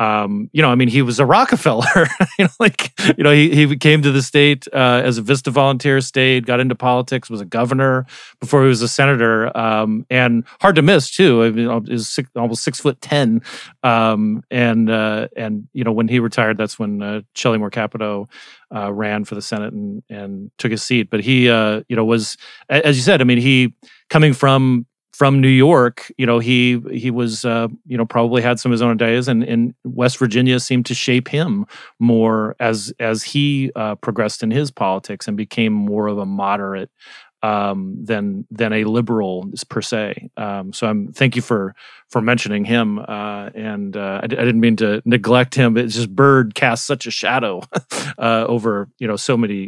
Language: English